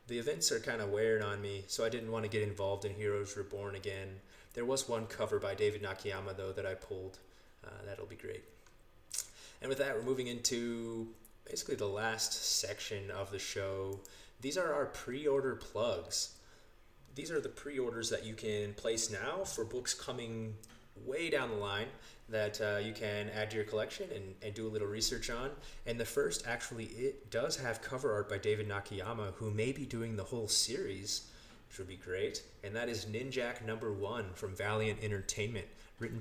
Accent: American